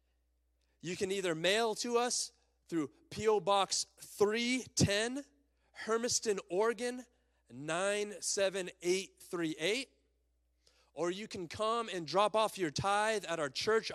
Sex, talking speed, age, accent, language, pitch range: male, 110 wpm, 30-49, American, English, 145-205 Hz